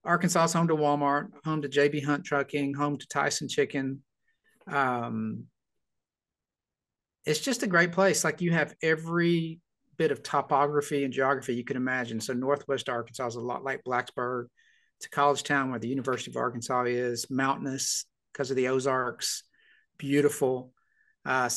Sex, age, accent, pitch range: male, 50-69, American, 125-150 Hz